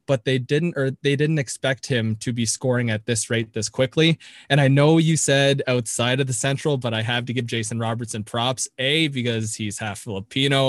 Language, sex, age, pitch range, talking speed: English, male, 20-39, 115-140 Hz, 215 wpm